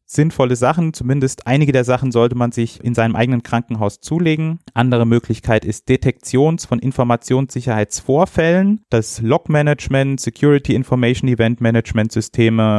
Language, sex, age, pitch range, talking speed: German, male, 30-49, 110-130 Hz, 110 wpm